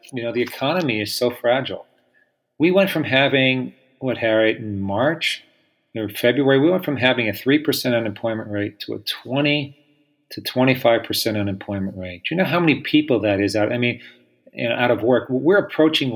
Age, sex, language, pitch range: 40-59, male, English, 105-135 Hz